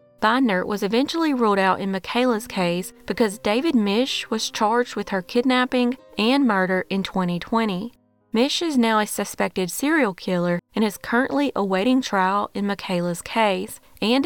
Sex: female